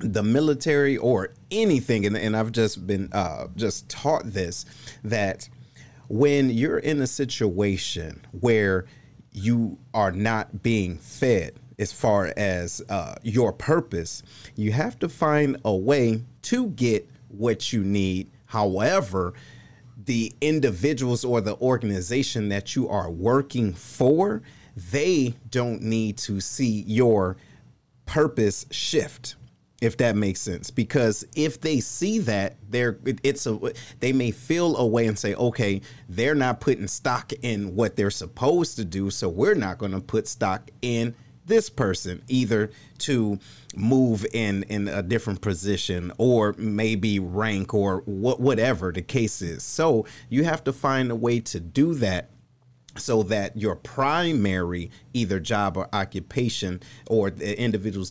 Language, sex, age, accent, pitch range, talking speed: English, male, 30-49, American, 100-130 Hz, 145 wpm